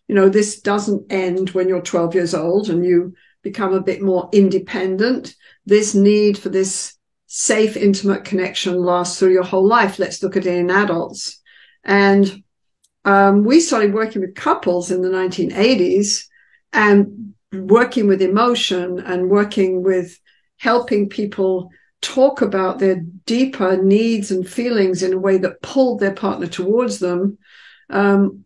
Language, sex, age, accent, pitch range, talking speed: English, female, 60-79, British, 185-220 Hz, 150 wpm